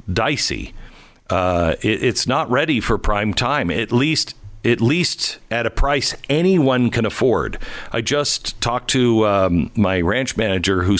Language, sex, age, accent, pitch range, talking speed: English, male, 50-69, American, 100-140 Hz, 155 wpm